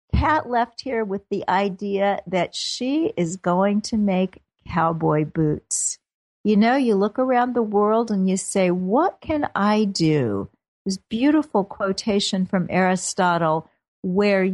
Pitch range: 180-225 Hz